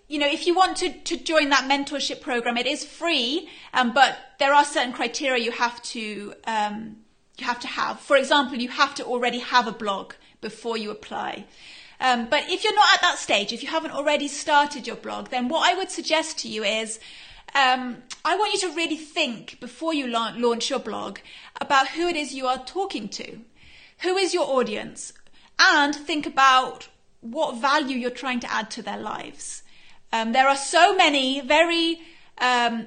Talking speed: 195 wpm